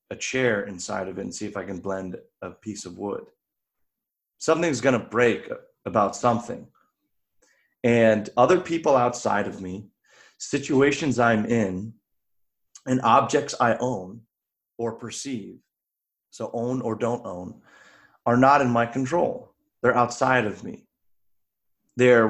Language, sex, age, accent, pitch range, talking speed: English, male, 30-49, American, 105-140 Hz, 135 wpm